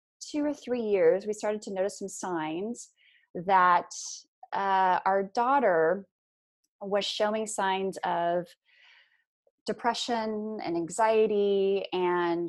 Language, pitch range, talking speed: English, 180-235 Hz, 105 wpm